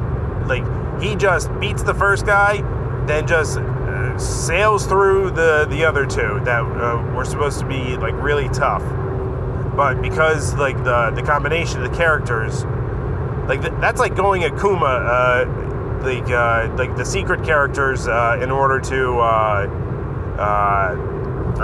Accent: American